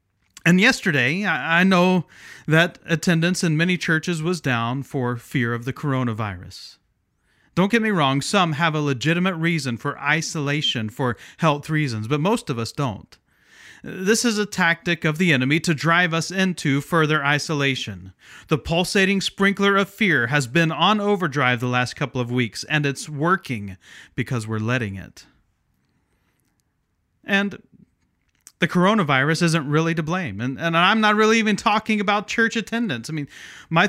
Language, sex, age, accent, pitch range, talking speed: English, male, 30-49, American, 140-195 Hz, 160 wpm